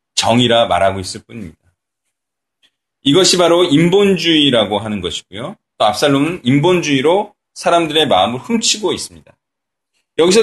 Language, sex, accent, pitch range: Korean, male, native, 125-200 Hz